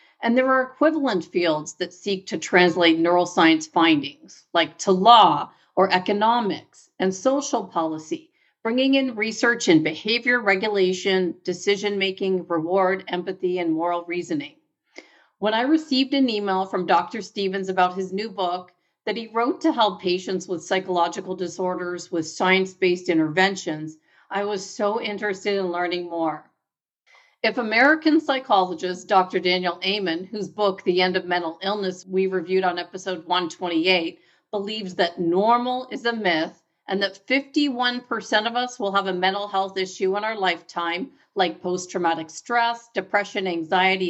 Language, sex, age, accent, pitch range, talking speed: English, female, 40-59, American, 180-220 Hz, 145 wpm